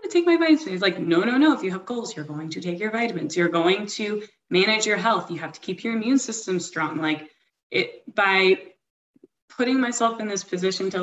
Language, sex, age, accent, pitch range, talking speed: English, female, 20-39, American, 170-215 Hz, 225 wpm